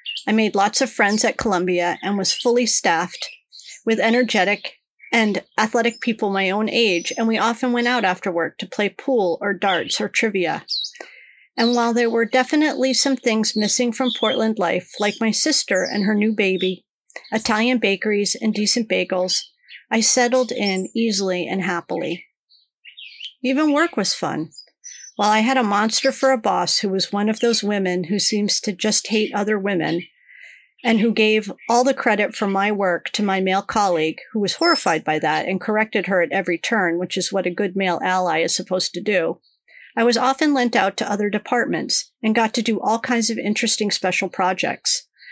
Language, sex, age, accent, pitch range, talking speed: English, female, 40-59, American, 195-240 Hz, 185 wpm